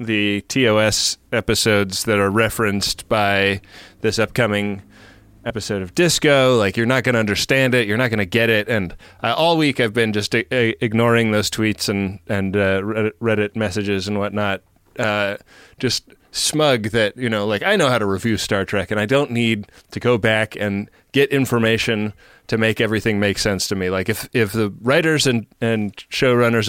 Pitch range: 105-120 Hz